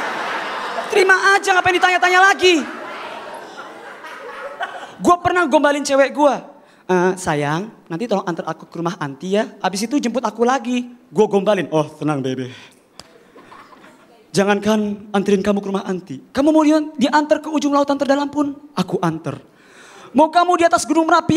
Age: 20-39